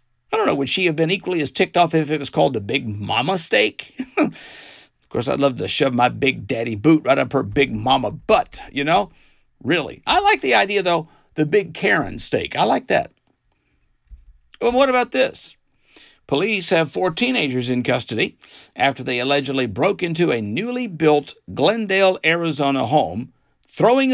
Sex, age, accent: male, 50-69, American